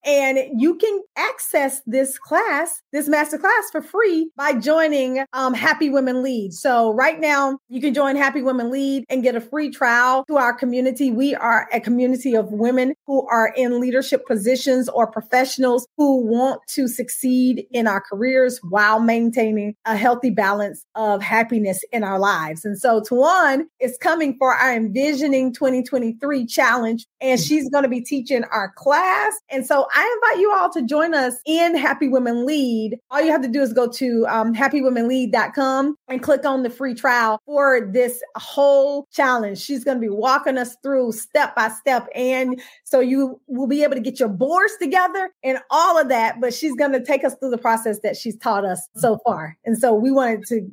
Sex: female